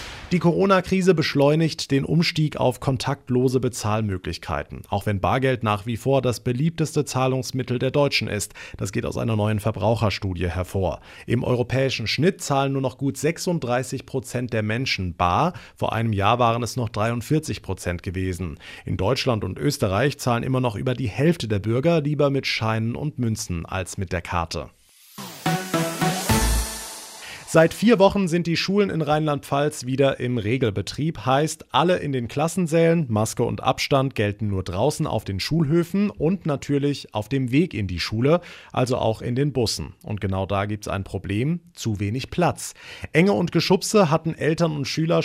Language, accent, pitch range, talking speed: German, German, 110-150 Hz, 165 wpm